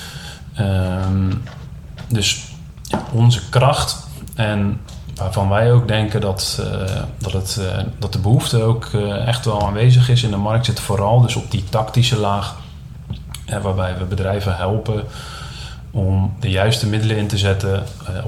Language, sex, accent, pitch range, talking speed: Dutch, male, Dutch, 100-115 Hz, 150 wpm